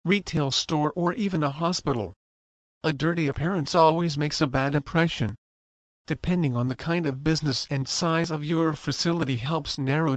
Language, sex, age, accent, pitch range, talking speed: English, male, 50-69, American, 125-165 Hz, 160 wpm